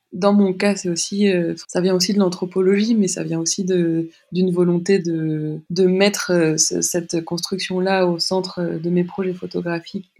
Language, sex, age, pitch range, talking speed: French, female, 20-39, 175-205 Hz, 170 wpm